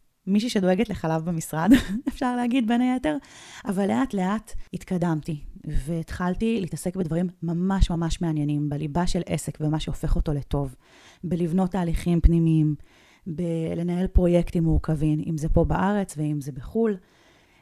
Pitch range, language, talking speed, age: 160-200 Hz, Hebrew, 130 wpm, 30-49